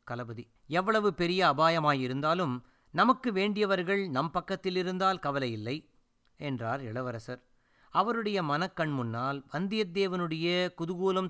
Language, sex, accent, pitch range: Tamil, male, native, 130-180 Hz